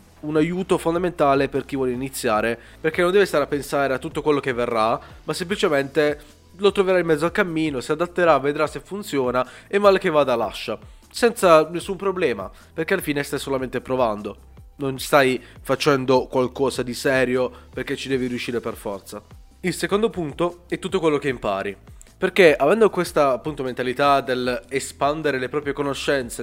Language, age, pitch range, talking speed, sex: Italian, 20-39, 125-160 Hz, 170 wpm, male